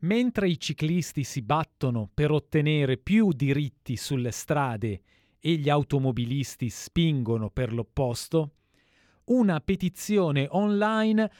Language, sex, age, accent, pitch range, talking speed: Italian, male, 40-59, native, 125-185 Hz, 105 wpm